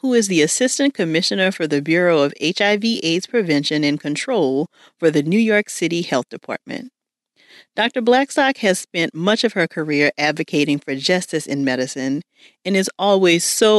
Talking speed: 160 wpm